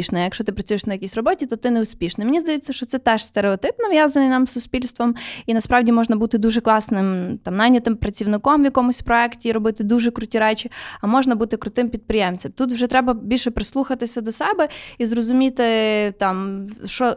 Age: 20-39